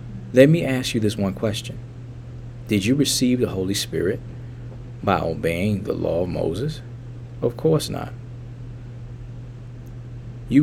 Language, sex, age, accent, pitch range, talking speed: English, male, 40-59, American, 110-120 Hz, 130 wpm